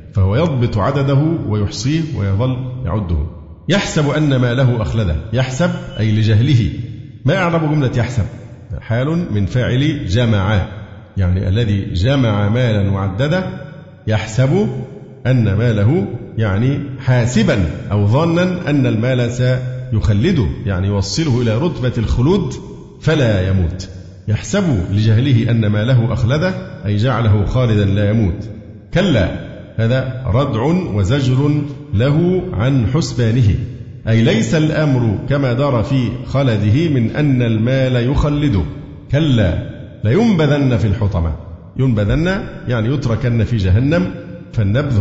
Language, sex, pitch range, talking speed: Arabic, male, 105-140 Hz, 110 wpm